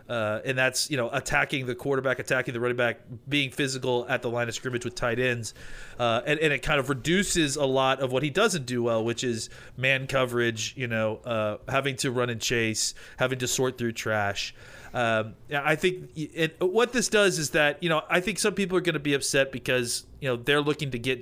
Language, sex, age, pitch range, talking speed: English, male, 30-49, 120-150 Hz, 225 wpm